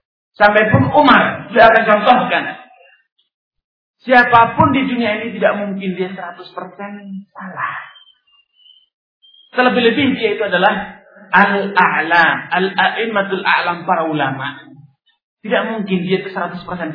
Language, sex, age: Malay, male, 40-59